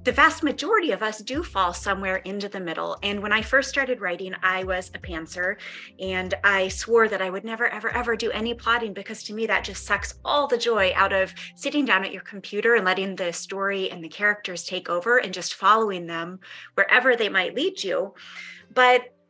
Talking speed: 210 wpm